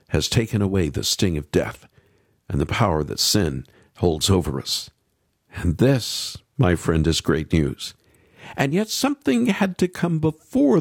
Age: 50-69